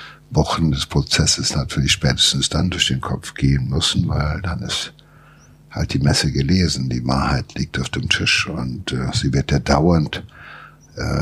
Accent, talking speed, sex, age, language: German, 165 wpm, male, 60-79, German